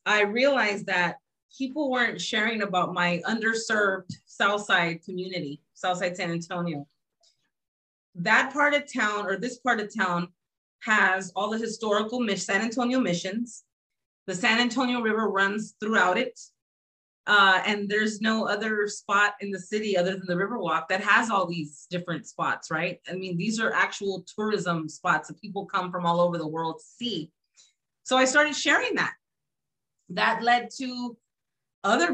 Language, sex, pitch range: English, female, 175-225 Hz